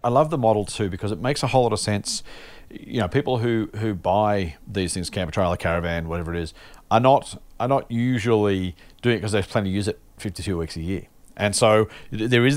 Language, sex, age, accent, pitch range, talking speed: English, male, 40-59, Australian, 95-130 Hz, 230 wpm